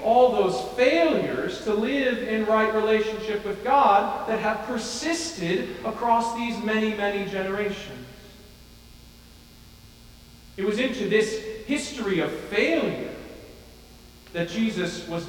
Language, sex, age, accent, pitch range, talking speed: English, male, 40-59, American, 180-235 Hz, 110 wpm